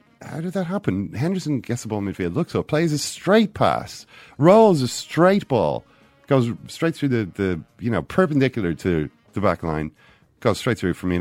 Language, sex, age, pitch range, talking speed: English, male, 40-59, 80-120 Hz, 200 wpm